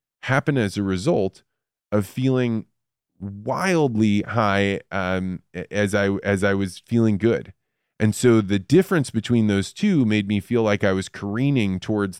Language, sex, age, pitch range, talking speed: English, male, 20-39, 100-125 Hz, 150 wpm